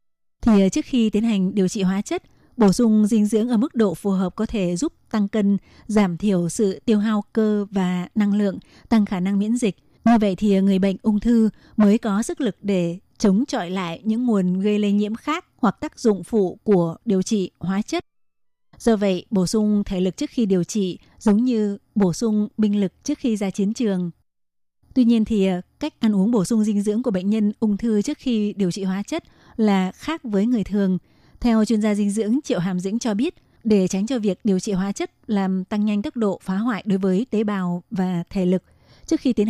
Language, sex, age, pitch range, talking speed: Vietnamese, female, 20-39, 195-225 Hz, 225 wpm